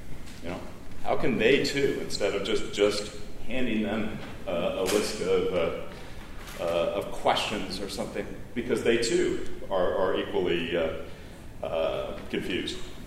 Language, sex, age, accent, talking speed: English, male, 40-59, American, 140 wpm